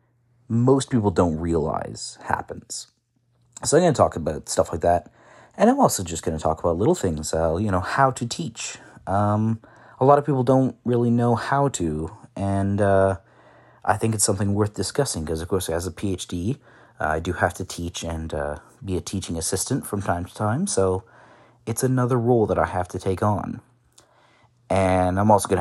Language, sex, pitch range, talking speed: English, male, 95-120 Hz, 195 wpm